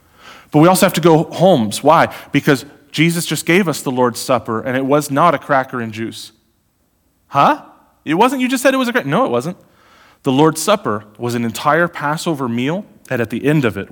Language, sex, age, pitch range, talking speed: English, male, 30-49, 105-150 Hz, 220 wpm